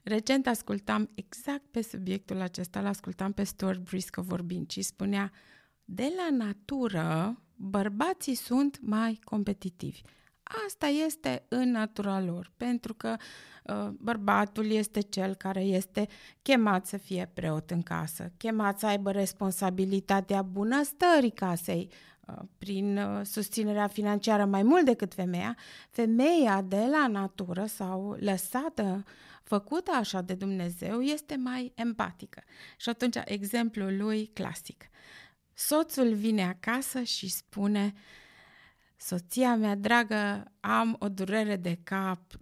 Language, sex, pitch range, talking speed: Romanian, female, 185-245 Hz, 115 wpm